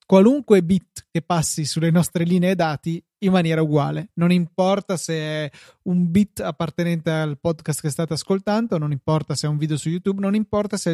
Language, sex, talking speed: Italian, male, 190 wpm